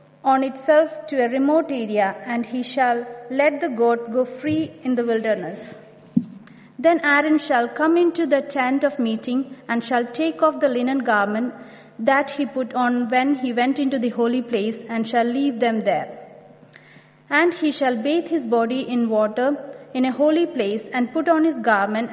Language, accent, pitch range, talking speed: English, Indian, 230-280 Hz, 180 wpm